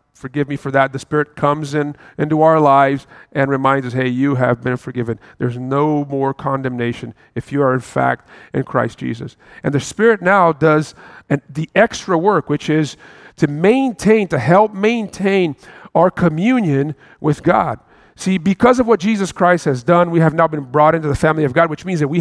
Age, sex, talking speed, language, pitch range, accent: 40-59, male, 195 wpm, English, 145-185 Hz, American